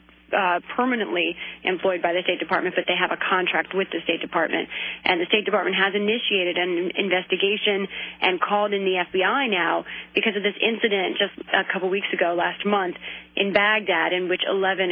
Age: 30-49